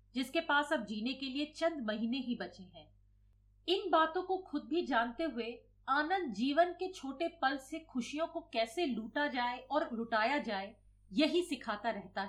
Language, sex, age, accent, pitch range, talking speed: Hindi, female, 40-59, native, 220-315 Hz, 175 wpm